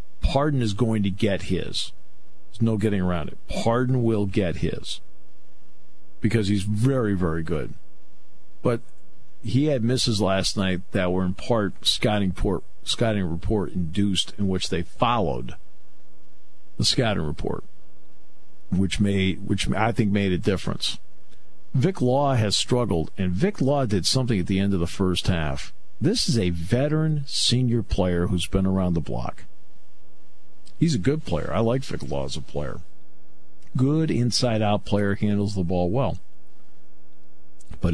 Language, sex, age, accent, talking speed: English, male, 50-69, American, 150 wpm